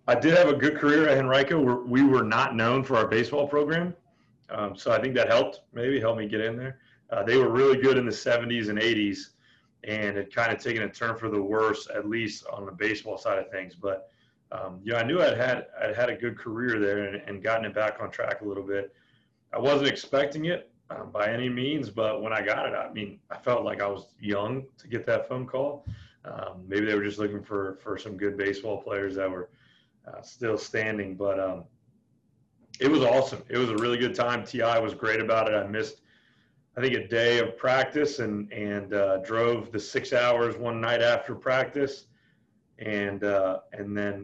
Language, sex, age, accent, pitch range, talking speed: English, male, 30-49, American, 100-125 Hz, 220 wpm